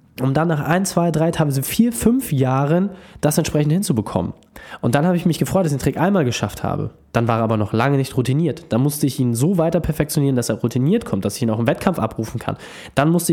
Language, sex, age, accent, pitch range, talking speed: German, male, 20-39, German, 120-170 Hz, 245 wpm